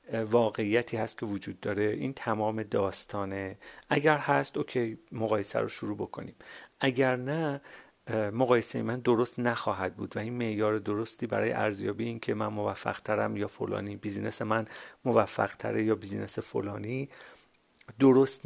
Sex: male